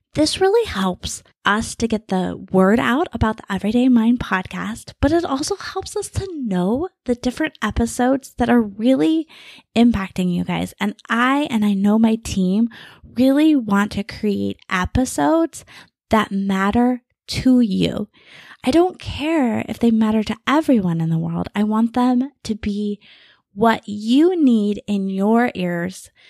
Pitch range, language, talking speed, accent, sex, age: 195-265 Hz, English, 155 wpm, American, female, 20-39